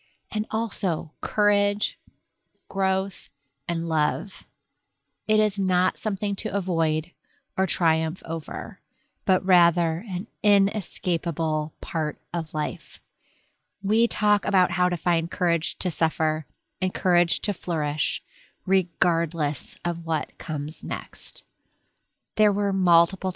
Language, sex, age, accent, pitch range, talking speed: English, female, 30-49, American, 160-195 Hz, 110 wpm